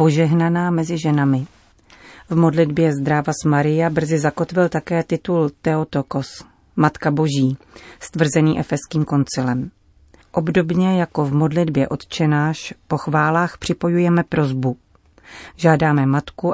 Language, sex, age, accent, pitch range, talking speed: Czech, female, 40-59, native, 140-165 Hz, 100 wpm